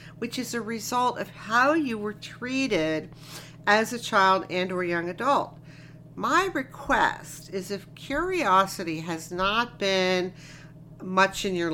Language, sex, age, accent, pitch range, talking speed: English, female, 50-69, American, 160-240 Hz, 140 wpm